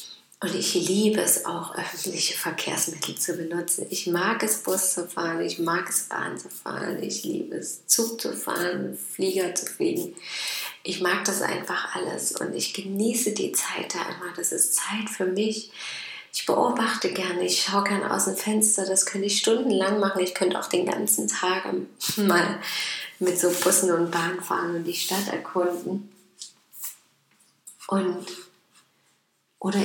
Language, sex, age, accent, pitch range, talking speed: German, female, 20-39, German, 180-215 Hz, 160 wpm